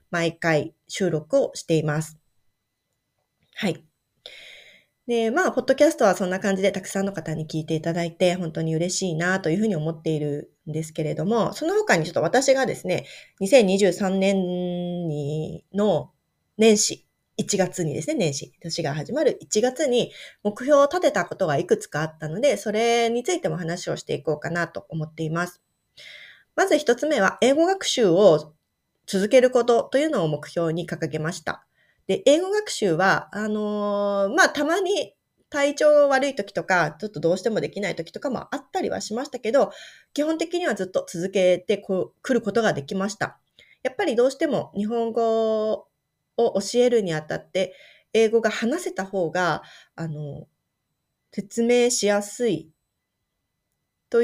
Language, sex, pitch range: Japanese, female, 165-240 Hz